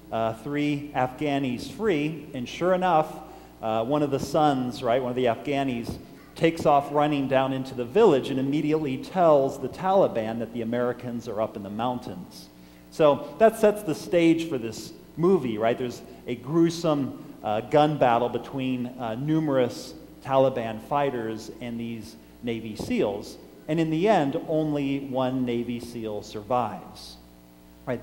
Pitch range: 115-145 Hz